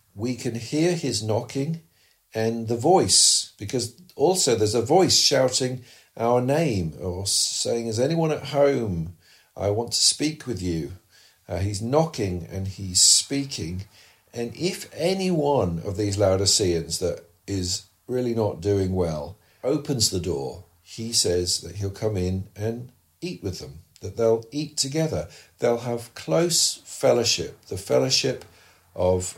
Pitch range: 95-130 Hz